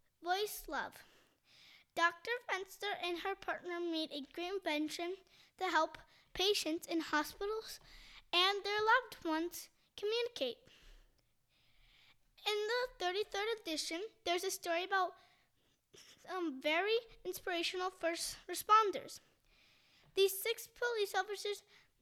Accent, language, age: American, English, 20-39